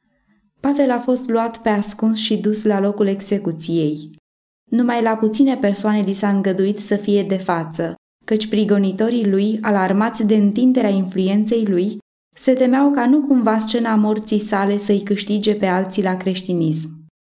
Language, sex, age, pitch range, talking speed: Romanian, female, 20-39, 195-230 Hz, 150 wpm